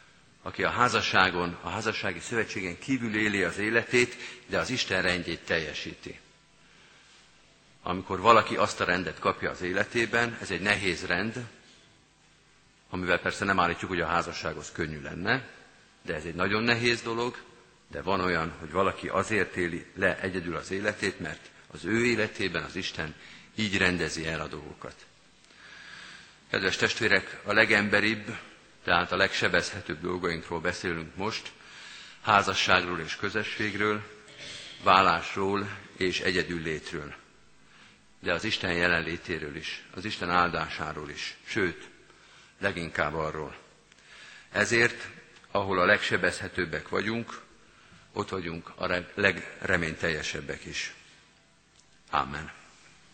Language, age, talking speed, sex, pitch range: Hungarian, 50-69, 120 wpm, male, 85-110 Hz